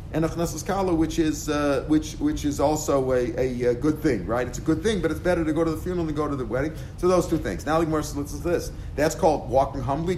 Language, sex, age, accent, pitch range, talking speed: English, male, 40-59, American, 140-170 Hz, 265 wpm